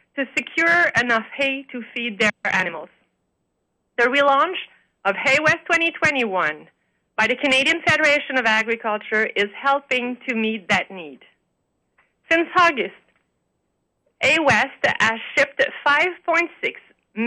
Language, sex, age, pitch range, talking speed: English, female, 30-49, 225-300 Hz, 115 wpm